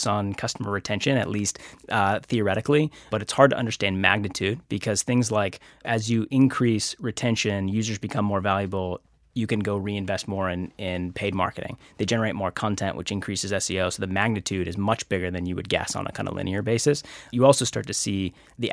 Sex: male